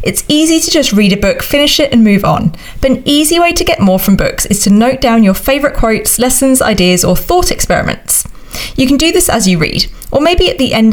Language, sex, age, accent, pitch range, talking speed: English, female, 30-49, British, 190-260 Hz, 245 wpm